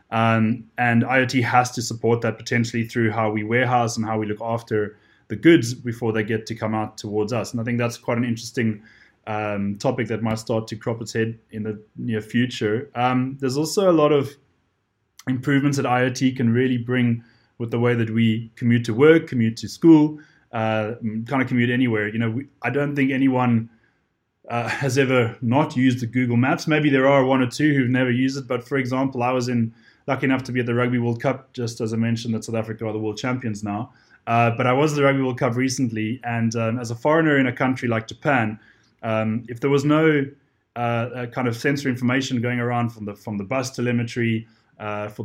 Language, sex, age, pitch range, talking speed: English, male, 20-39, 115-130 Hz, 220 wpm